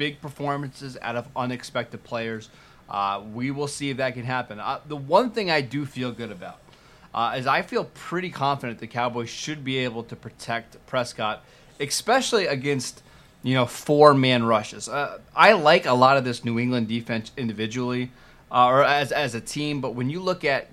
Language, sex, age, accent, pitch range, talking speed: English, male, 20-39, American, 115-140 Hz, 190 wpm